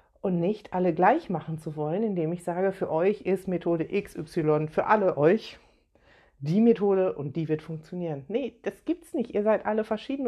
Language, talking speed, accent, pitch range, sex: German, 185 wpm, German, 160-220 Hz, female